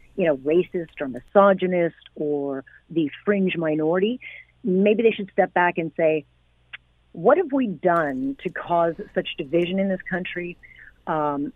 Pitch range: 160-195 Hz